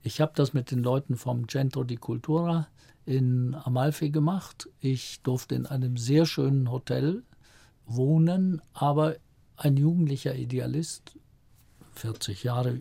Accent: German